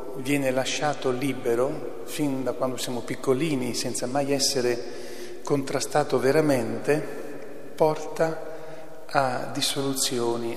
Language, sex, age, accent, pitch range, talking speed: Italian, male, 40-59, native, 115-145 Hz, 90 wpm